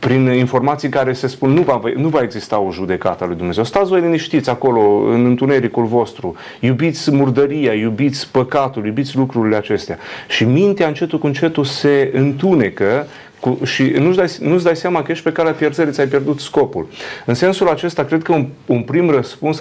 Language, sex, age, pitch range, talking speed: Romanian, male, 30-49, 115-150 Hz, 180 wpm